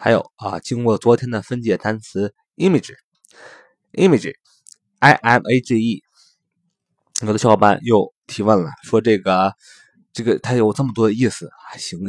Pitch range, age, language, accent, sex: 105-130 Hz, 20-39, Chinese, native, male